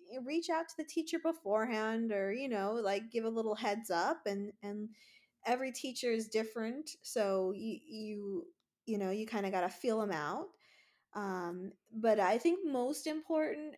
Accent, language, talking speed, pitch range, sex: American, English, 175 wpm, 195-235 Hz, female